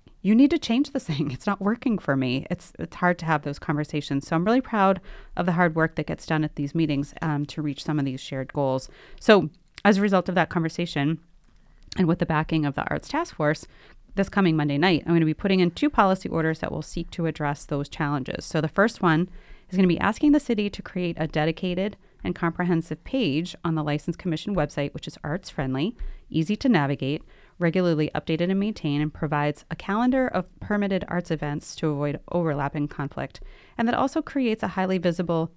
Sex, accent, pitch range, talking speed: female, American, 150-195 Hz, 220 wpm